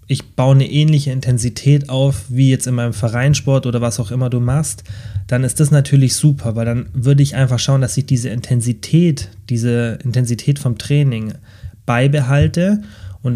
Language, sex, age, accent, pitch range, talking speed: German, male, 20-39, German, 115-135 Hz, 170 wpm